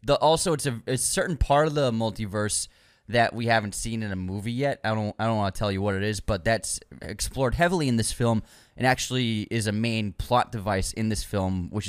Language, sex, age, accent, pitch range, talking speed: English, male, 20-39, American, 100-130 Hz, 235 wpm